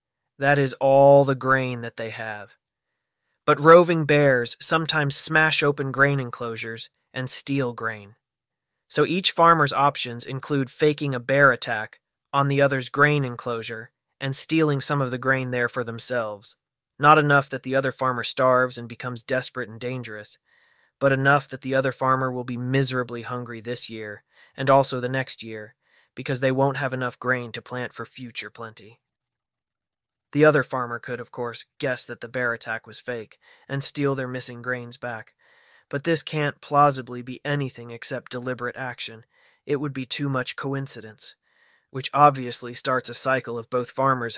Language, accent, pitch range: English, American, 120-140 Hz